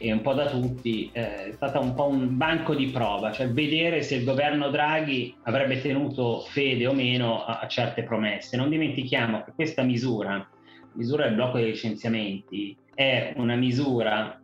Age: 30-49